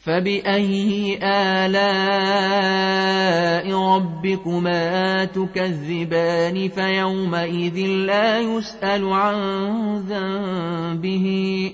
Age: 30-49